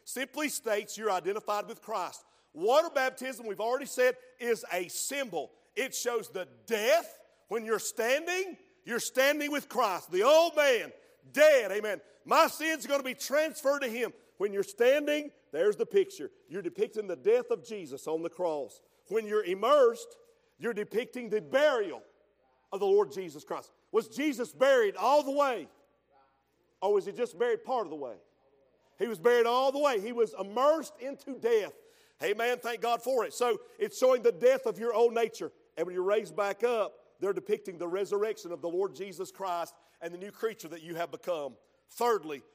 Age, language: 50-69, English